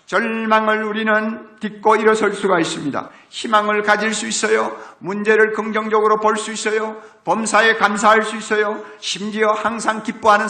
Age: 50-69